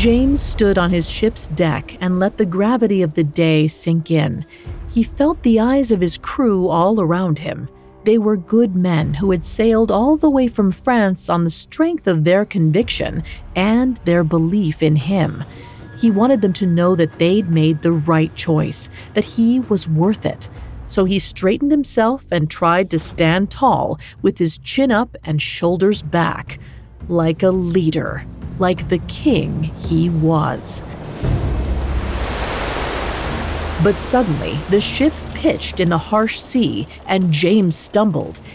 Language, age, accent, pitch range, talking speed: English, 40-59, American, 160-220 Hz, 155 wpm